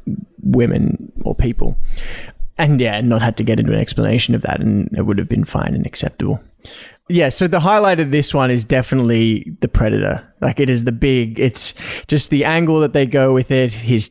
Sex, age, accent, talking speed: male, 20-39, Australian, 205 wpm